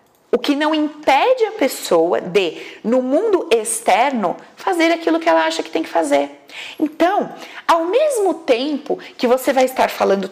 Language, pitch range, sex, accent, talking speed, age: Portuguese, 205-330 Hz, female, Brazilian, 165 wpm, 40-59